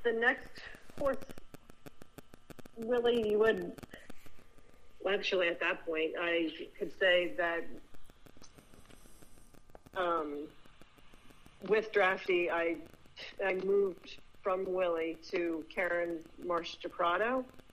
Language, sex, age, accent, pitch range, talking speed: English, female, 40-59, American, 170-190 Hz, 90 wpm